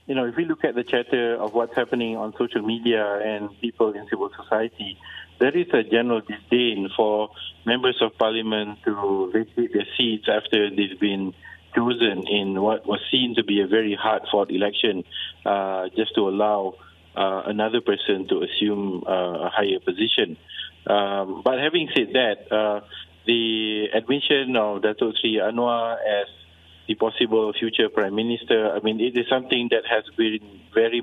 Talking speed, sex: 160 wpm, male